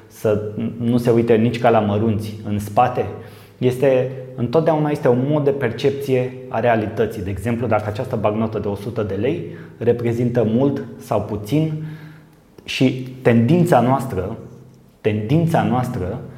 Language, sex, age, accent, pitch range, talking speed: Romanian, male, 20-39, native, 110-135 Hz, 130 wpm